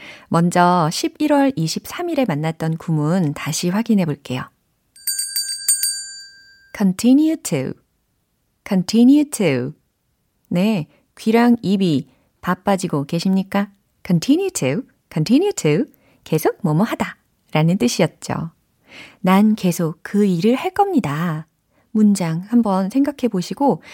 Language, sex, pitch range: Korean, female, 165-270 Hz